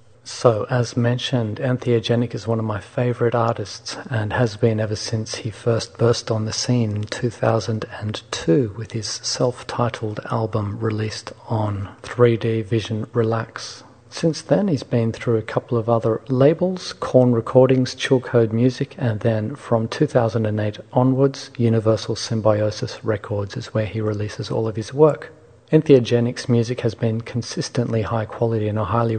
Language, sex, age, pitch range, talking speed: English, male, 40-59, 110-125 Hz, 150 wpm